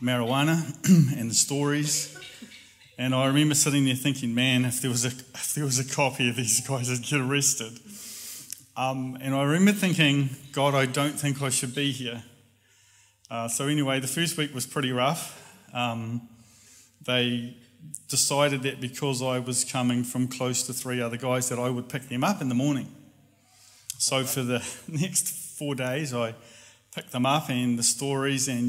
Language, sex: English, male